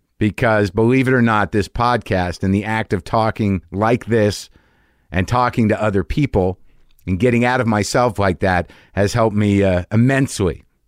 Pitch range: 95-115 Hz